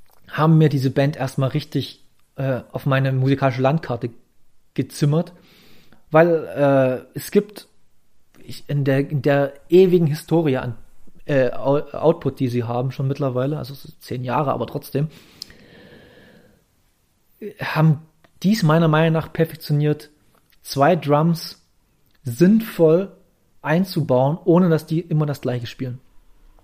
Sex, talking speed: male, 120 wpm